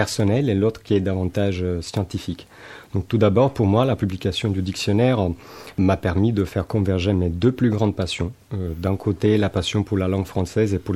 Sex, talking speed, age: male, 195 wpm, 40-59